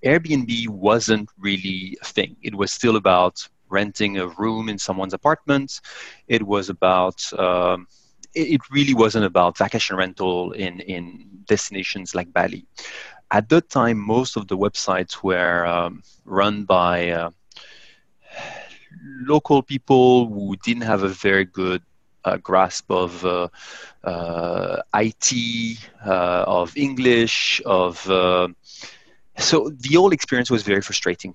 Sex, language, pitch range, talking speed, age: male, English, 95-110 Hz, 130 wpm, 30-49